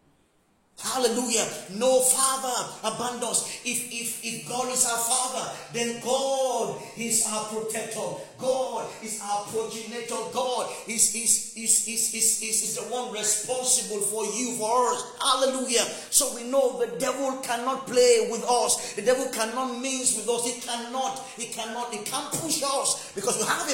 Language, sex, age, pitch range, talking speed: English, male, 40-59, 220-255 Hz, 155 wpm